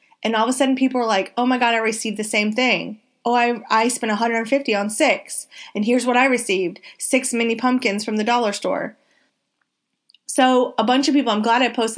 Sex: female